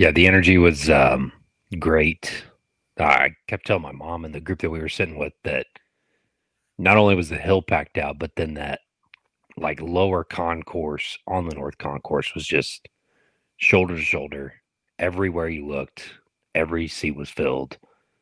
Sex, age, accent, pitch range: male, 40-59, American, 80-95 Hz